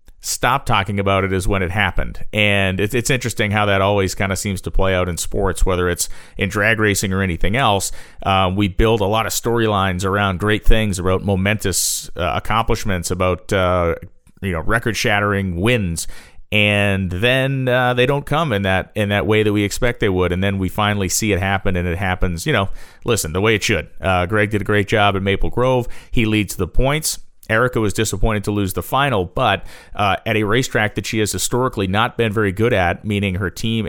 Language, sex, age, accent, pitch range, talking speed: English, male, 40-59, American, 95-110 Hz, 215 wpm